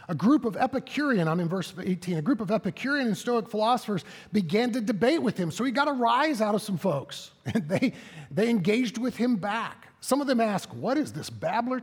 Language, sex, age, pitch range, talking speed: English, male, 50-69, 175-235 Hz, 225 wpm